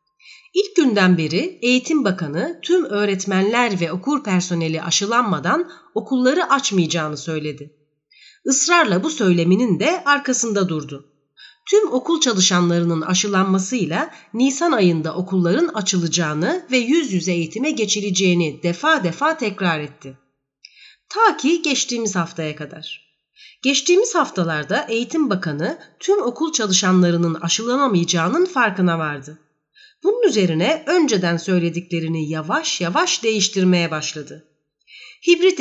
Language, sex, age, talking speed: Turkish, female, 30-49, 105 wpm